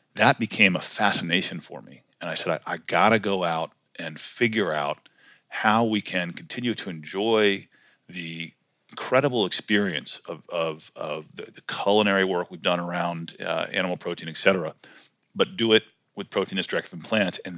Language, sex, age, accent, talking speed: English, male, 40-59, American, 165 wpm